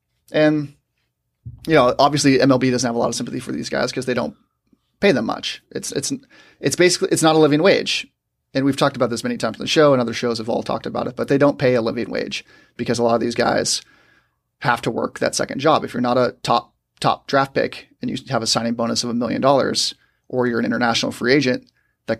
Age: 30-49